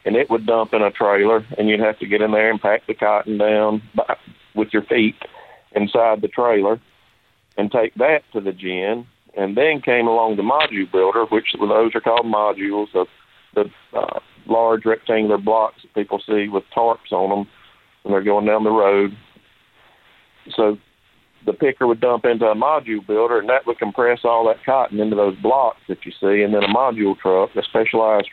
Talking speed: 190 wpm